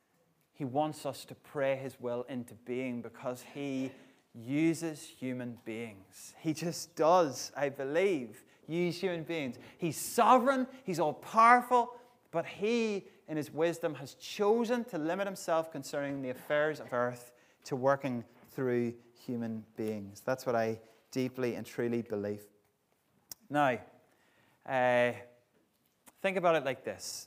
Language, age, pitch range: English, 30-49, 130-180 Hz